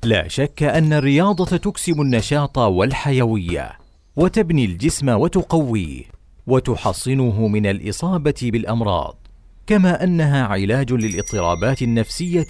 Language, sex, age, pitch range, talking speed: Arabic, male, 50-69, 105-145 Hz, 90 wpm